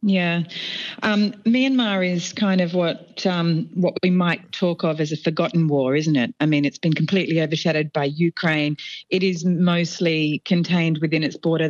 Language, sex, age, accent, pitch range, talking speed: English, female, 40-59, Australian, 155-195 Hz, 175 wpm